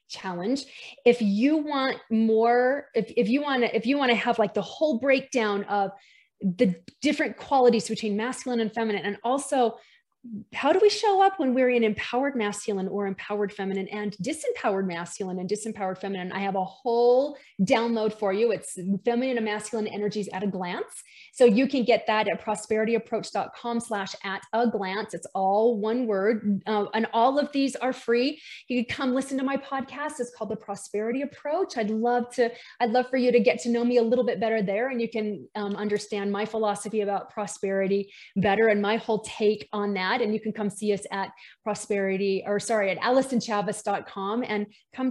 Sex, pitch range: female, 205-250 Hz